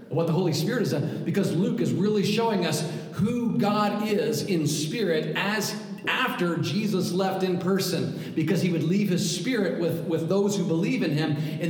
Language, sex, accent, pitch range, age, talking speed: English, male, American, 160-195 Hz, 40-59, 190 wpm